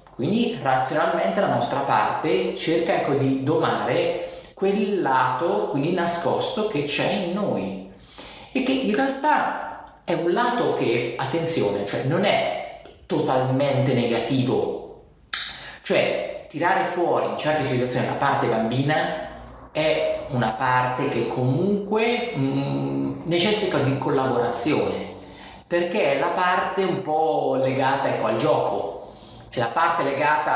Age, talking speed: 30-49, 120 wpm